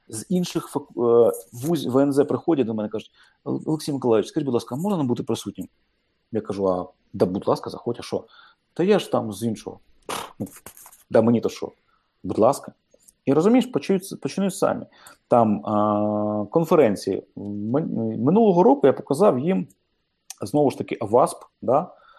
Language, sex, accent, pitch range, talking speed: Ukrainian, male, native, 105-155 Hz, 150 wpm